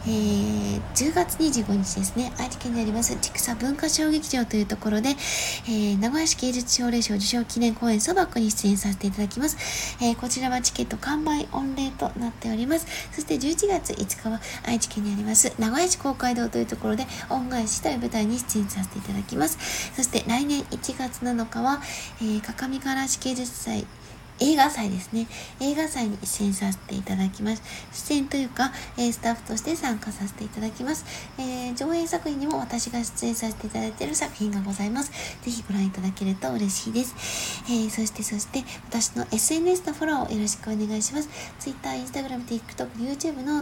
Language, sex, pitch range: Japanese, female, 215-270 Hz